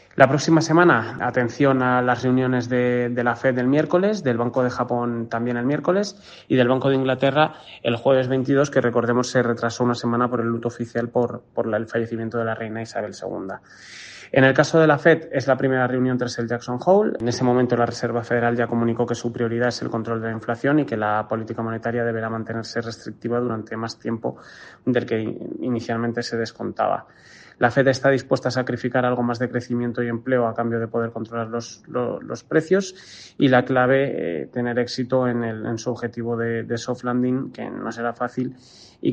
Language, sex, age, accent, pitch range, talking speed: Spanish, male, 20-39, Spanish, 115-125 Hz, 205 wpm